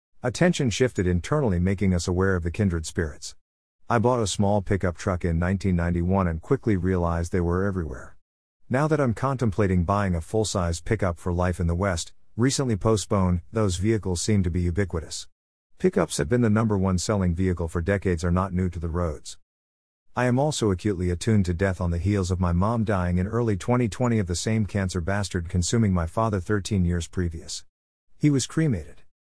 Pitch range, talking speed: 85-115 Hz, 190 wpm